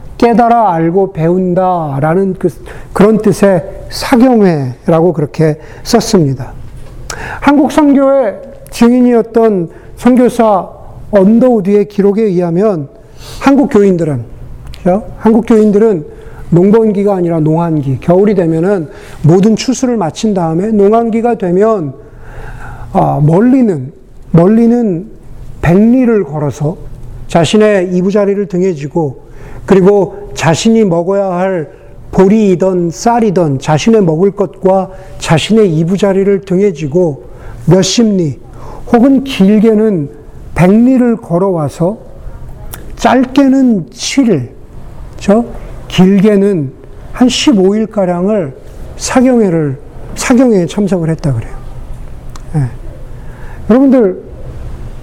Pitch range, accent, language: 150-220 Hz, native, Korean